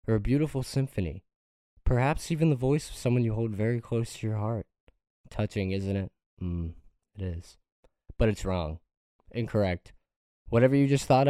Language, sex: English, male